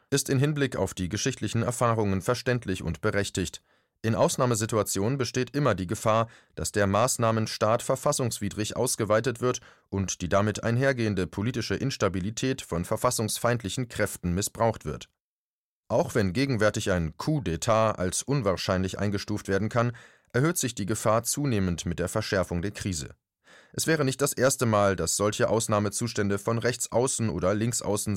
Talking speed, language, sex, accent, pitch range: 145 wpm, German, male, German, 100-125 Hz